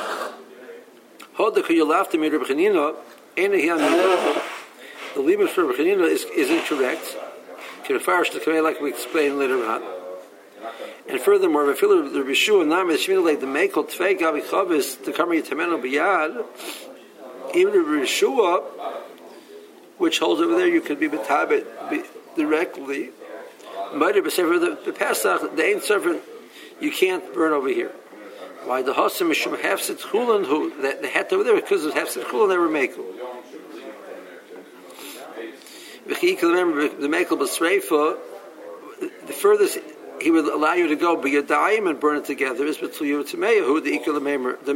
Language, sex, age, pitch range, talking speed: English, male, 60-79, 330-405 Hz, 100 wpm